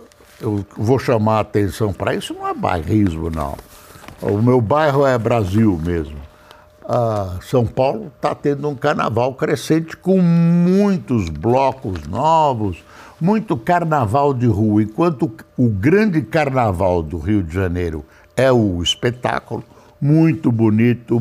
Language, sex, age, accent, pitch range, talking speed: Portuguese, male, 60-79, Brazilian, 105-155 Hz, 130 wpm